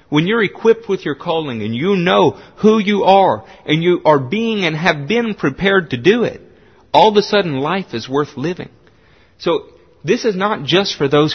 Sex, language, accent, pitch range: male, English, American, 120-180 Hz